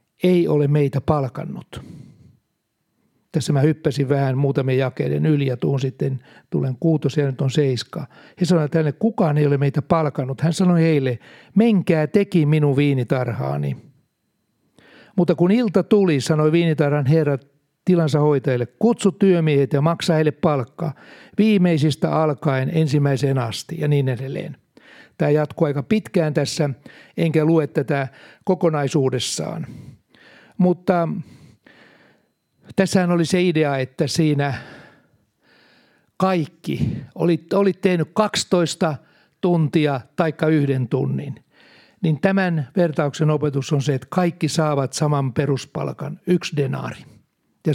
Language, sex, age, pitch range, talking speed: Finnish, male, 60-79, 140-170 Hz, 120 wpm